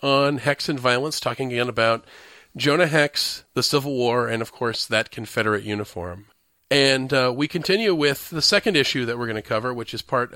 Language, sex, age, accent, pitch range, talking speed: English, male, 40-59, American, 115-145 Hz, 195 wpm